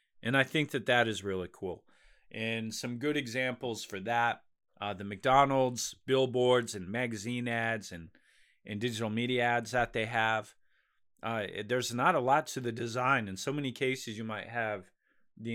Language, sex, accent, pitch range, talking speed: English, male, American, 100-125 Hz, 180 wpm